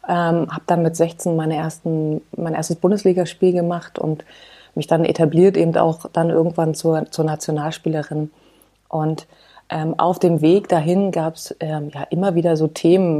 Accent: German